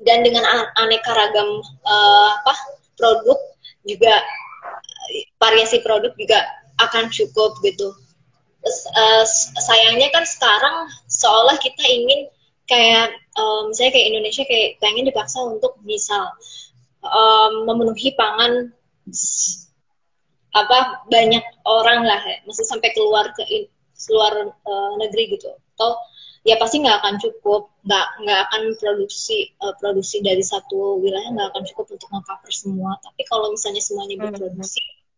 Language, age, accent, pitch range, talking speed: Indonesian, 20-39, native, 200-255 Hz, 125 wpm